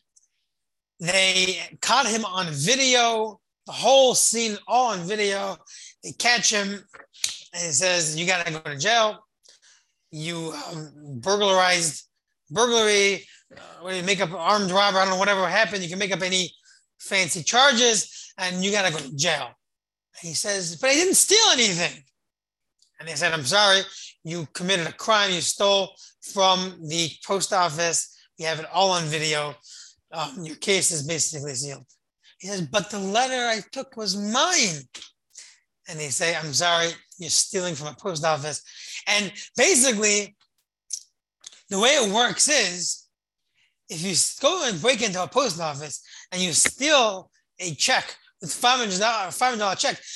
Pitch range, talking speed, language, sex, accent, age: 165-220 Hz, 155 wpm, English, male, American, 30-49